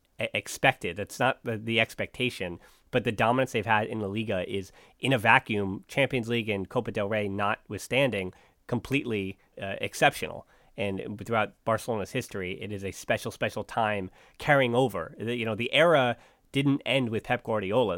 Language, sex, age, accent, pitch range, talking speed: English, male, 30-49, American, 100-125 Hz, 165 wpm